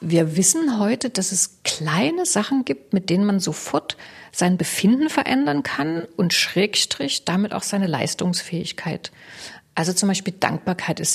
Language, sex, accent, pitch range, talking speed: German, female, German, 165-210 Hz, 145 wpm